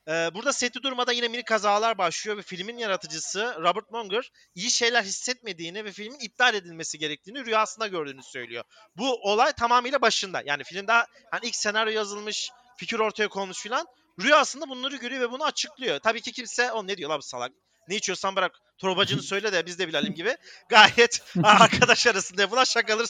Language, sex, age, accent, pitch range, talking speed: Turkish, male, 40-59, native, 200-250 Hz, 175 wpm